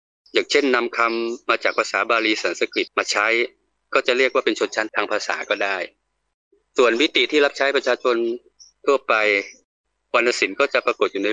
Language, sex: Thai, male